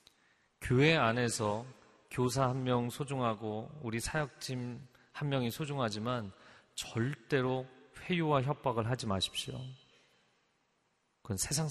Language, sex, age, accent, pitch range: Korean, male, 30-49, native, 110-145 Hz